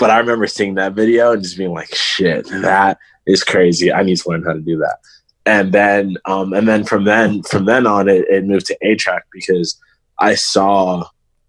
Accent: American